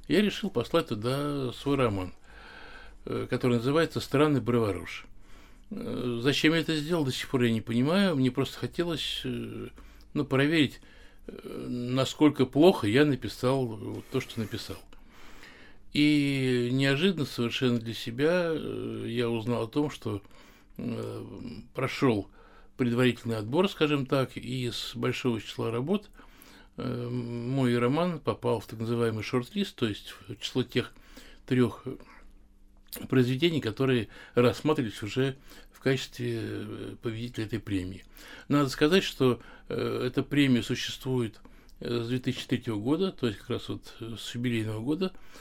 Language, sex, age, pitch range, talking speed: Russian, male, 60-79, 115-145 Hz, 120 wpm